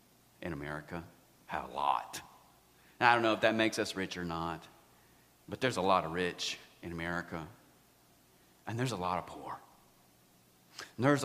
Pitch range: 90-115 Hz